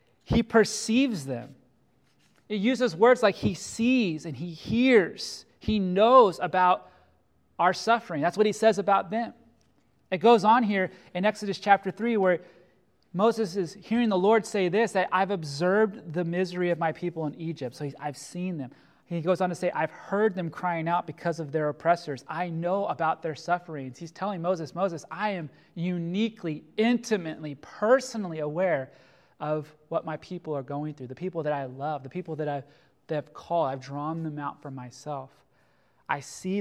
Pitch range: 150-200 Hz